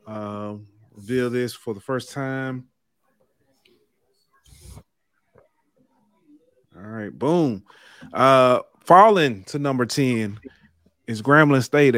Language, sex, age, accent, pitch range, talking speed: English, male, 30-49, American, 110-145 Hz, 95 wpm